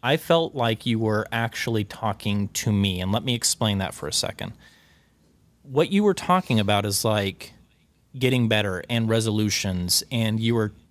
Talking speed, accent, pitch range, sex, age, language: 170 wpm, American, 100-130 Hz, male, 30-49, English